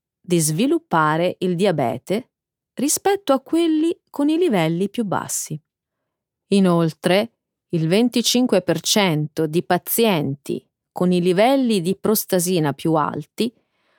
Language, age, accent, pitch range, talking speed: Italian, 30-49, native, 170-250 Hz, 105 wpm